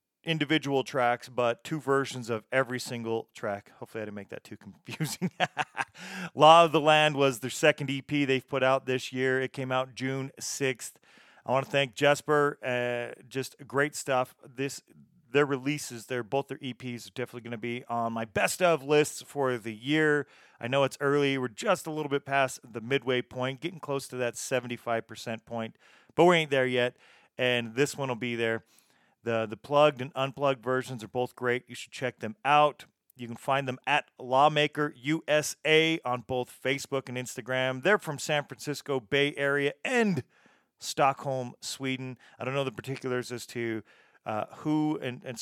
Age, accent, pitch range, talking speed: 40-59, American, 125-150 Hz, 185 wpm